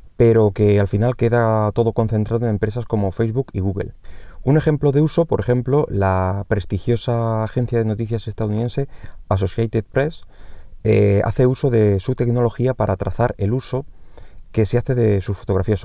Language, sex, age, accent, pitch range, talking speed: Spanish, male, 20-39, Spanish, 95-120 Hz, 165 wpm